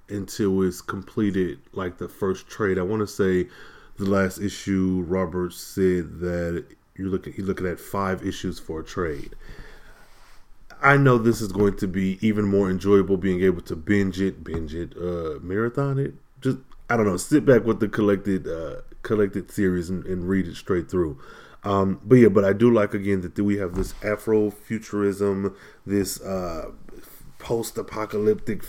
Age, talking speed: 20-39, 170 wpm